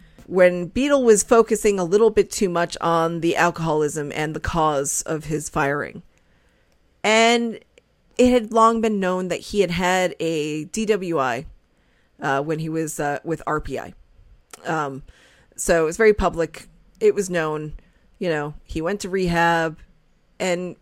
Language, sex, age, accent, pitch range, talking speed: English, female, 30-49, American, 155-210 Hz, 155 wpm